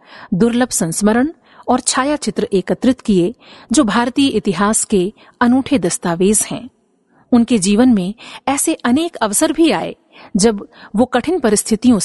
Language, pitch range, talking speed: Hindi, 200-260 Hz, 120 wpm